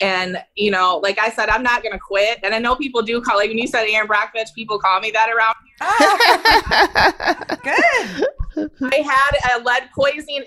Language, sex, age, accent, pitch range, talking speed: English, female, 20-39, American, 195-240 Hz, 200 wpm